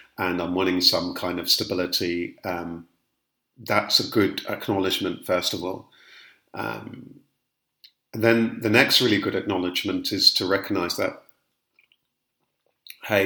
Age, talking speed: 40-59, 120 wpm